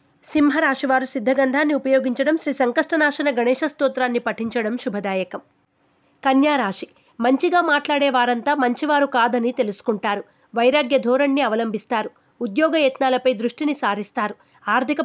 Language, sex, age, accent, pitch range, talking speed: Telugu, female, 30-49, native, 240-285 Hz, 95 wpm